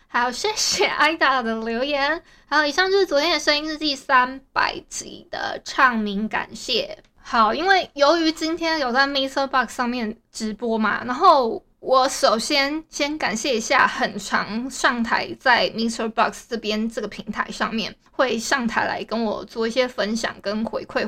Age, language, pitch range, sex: 20-39, Chinese, 230-290 Hz, female